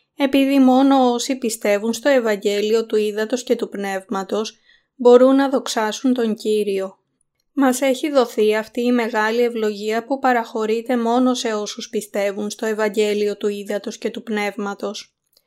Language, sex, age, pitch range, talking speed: Greek, female, 20-39, 215-255 Hz, 140 wpm